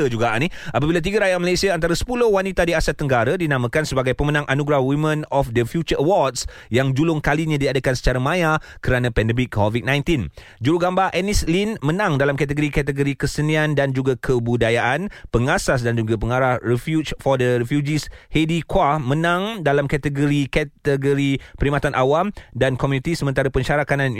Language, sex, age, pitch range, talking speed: Malay, male, 30-49, 125-155 Hz, 145 wpm